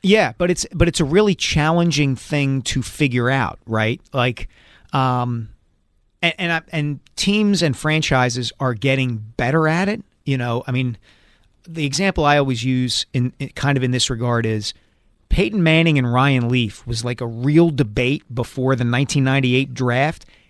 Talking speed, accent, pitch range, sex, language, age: 170 wpm, American, 120-155 Hz, male, English, 40-59